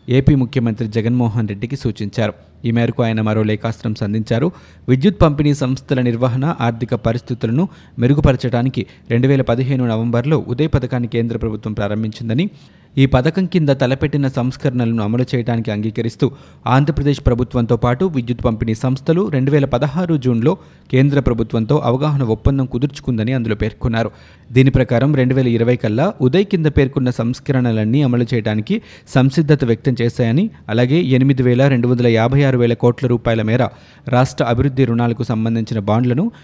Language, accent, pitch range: Telugu, native, 115-140 Hz